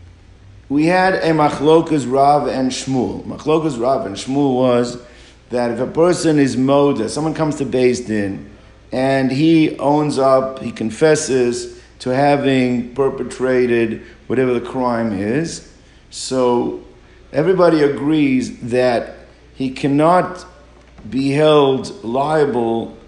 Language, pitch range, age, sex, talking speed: English, 125-150 Hz, 50-69, male, 115 wpm